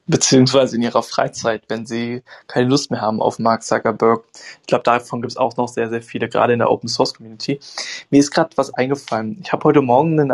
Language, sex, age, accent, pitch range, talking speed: German, male, 20-39, German, 120-140 Hz, 215 wpm